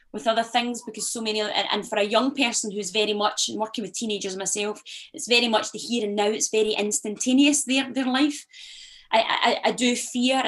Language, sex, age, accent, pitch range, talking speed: English, female, 20-39, British, 210-260 Hz, 210 wpm